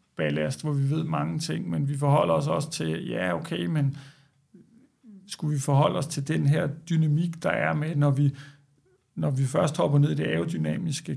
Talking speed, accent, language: 195 wpm, native, Danish